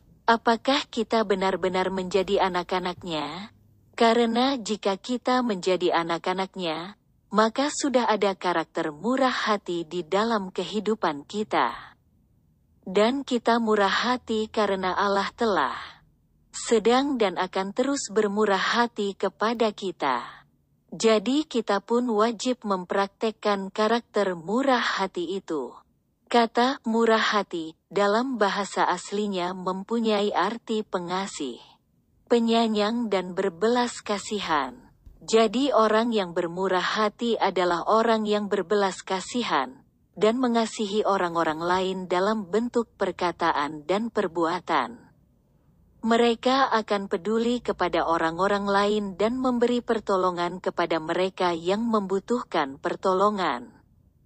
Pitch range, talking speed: 185-230 Hz, 100 wpm